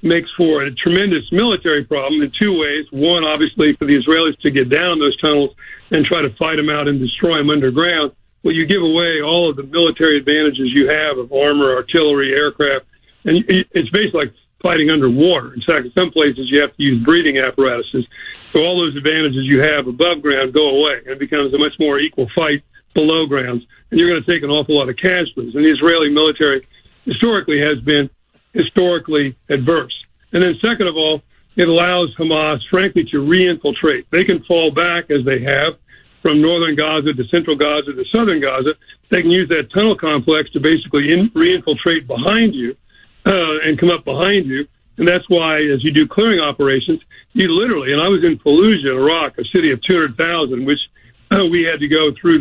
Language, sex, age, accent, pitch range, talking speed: English, male, 50-69, American, 145-175 Hz, 195 wpm